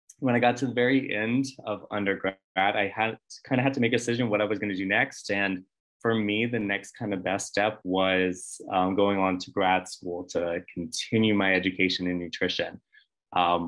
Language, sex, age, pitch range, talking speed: English, male, 20-39, 95-120 Hz, 205 wpm